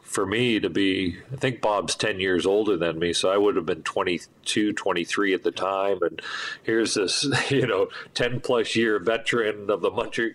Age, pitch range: 40-59, 95-135 Hz